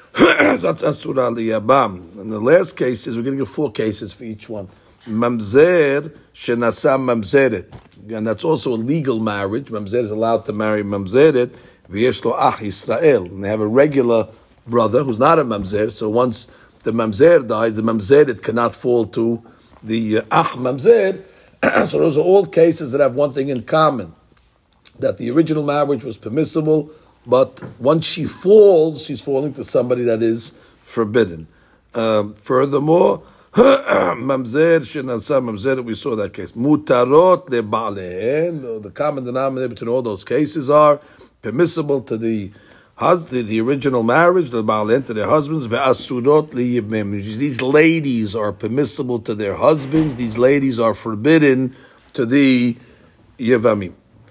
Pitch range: 110-145 Hz